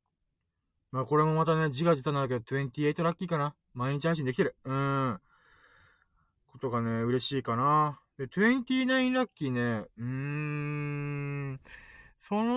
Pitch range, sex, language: 125-205 Hz, male, Japanese